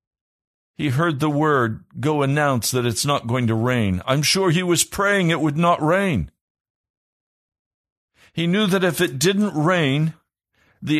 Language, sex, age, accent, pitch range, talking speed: English, male, 50-69, American, 125-165 Hz, 160 wpm